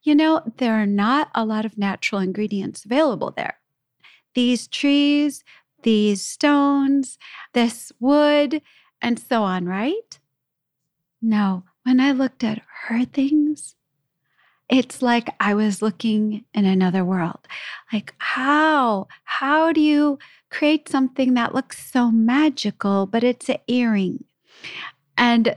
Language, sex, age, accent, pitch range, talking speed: English, female, 40-59, American, 215-285 Hz, 125 wpm